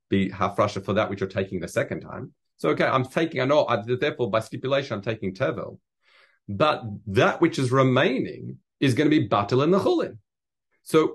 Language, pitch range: English, 110-150 Hz